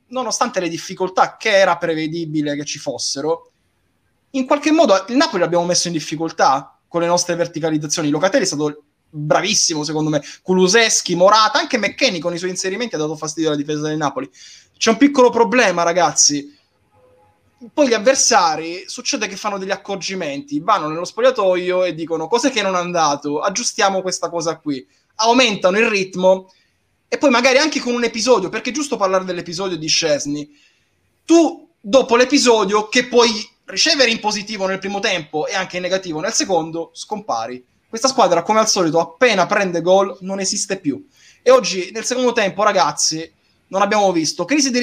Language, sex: Italian, male